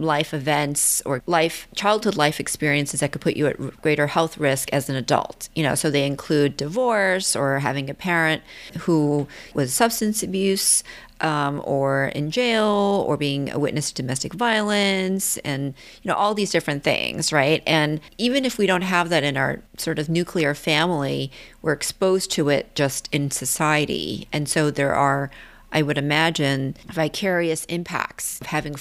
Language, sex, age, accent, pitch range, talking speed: English, female, 40-59, American, 145-175 Hz, 170 wpm